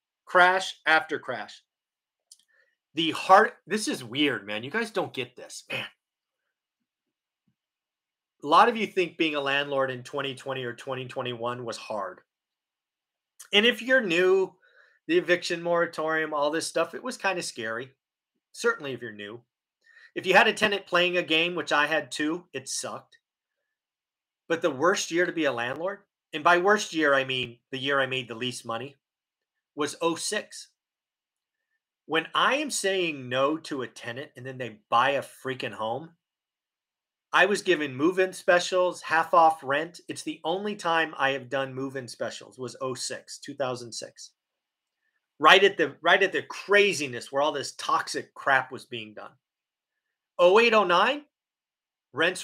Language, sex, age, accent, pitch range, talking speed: English, male, 30-49, American, 135-190 Hz, 160 wpm